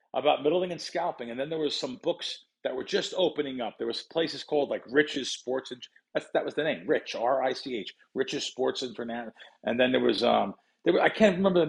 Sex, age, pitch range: male, 40-59, 120-165 Hz